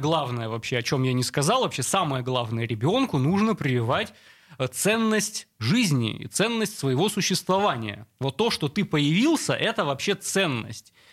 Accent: native